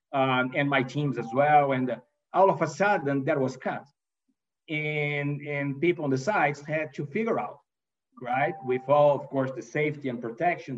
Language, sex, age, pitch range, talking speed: English, male, 50-69, 135-175 Hz, 190 wpm